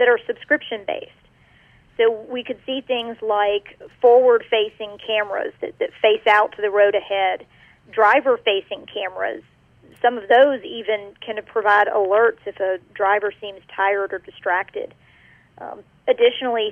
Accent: American